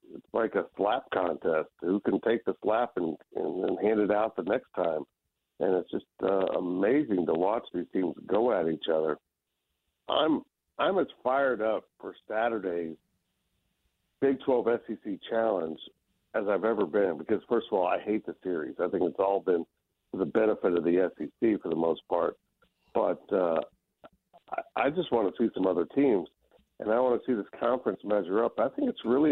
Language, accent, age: English, American, 60-79